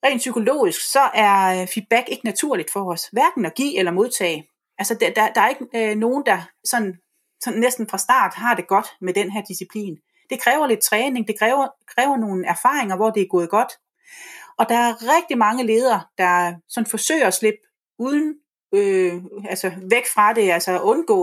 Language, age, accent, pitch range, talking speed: Danish, 30-49, native, 190-250 Hz, 190 wpm